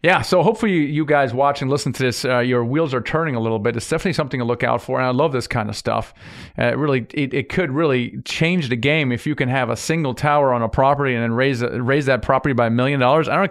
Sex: male